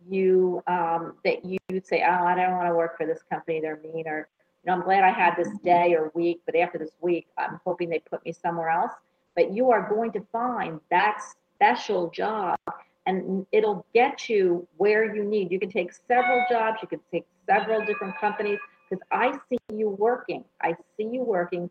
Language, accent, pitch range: English, American, 170-215 Hz